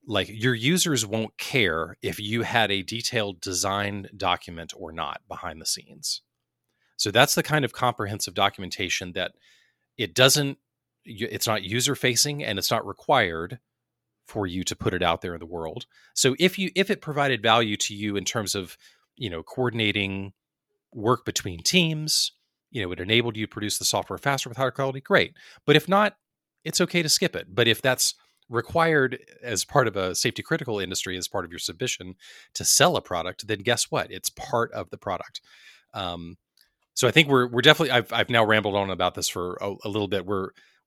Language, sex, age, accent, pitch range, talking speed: English, male, 30-49, American, 95-130 Hz, 195 wpm